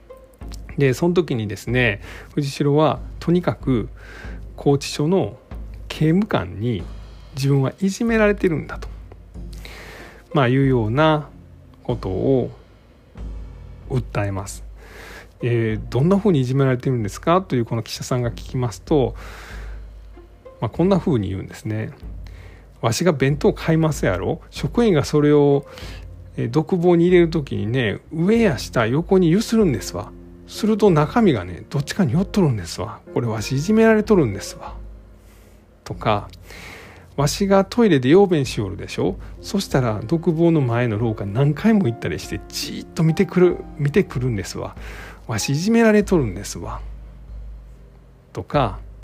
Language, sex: Japanese, male